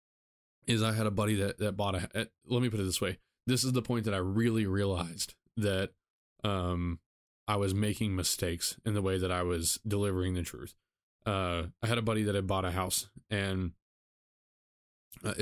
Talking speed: 195 wpm